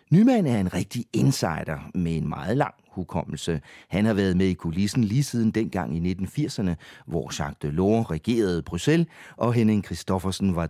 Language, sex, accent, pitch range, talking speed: English, male, Danish, 85-130 Hz, 175 wpm